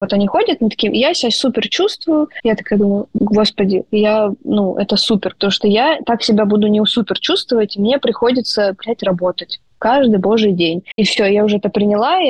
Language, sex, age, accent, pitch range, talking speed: Russian, female, 20-39, native, 200-235 Hz, 200 wpm